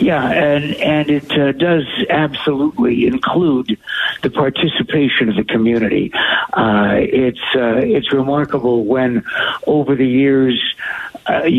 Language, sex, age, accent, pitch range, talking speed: English, male, 60-79, American, 120-145 Hz, 120 wpm